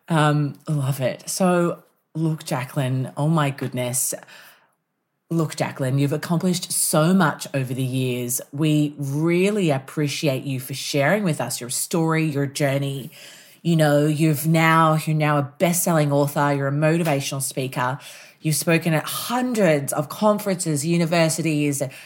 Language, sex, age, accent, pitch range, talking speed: English, female, 30-49, Australian, 135-160 Hz, 135 wpm